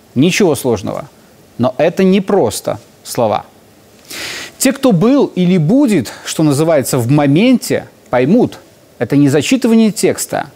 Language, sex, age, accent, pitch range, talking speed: Russian, male, 30-49, native, 145-220 Hz, 120 wpm